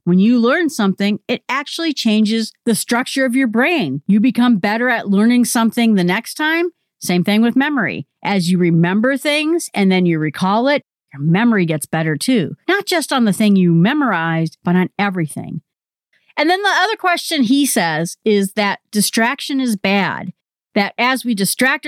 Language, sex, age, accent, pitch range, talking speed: English, female, 40-59, American, 195-265 Hz, 180 wpm